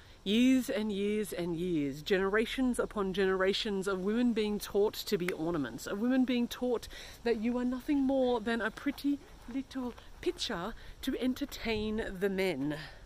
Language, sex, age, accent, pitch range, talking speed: English, female, 40-59, Australian, 185-255 Hz, 150 wpm